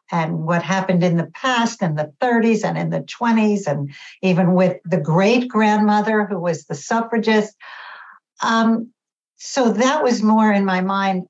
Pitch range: 170-210 Hz